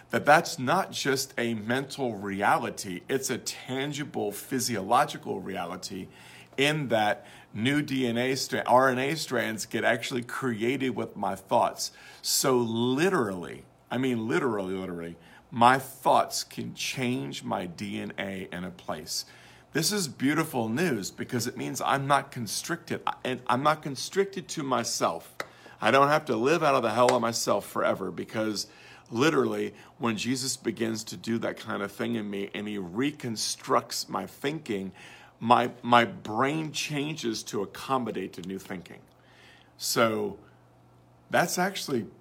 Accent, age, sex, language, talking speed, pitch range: American, 40-59, male, English, 140 wpm, 100-135 Hz